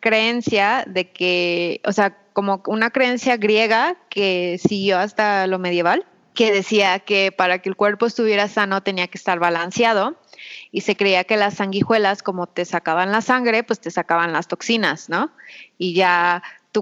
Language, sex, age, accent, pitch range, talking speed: Spanish, female, 20-39, Mexican, 185-225 Hz, 170 wpm